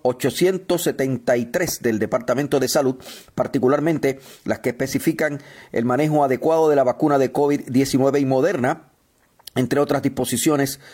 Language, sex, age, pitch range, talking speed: Spanish, male, 40-59, 125-155 Hz, 120 wpm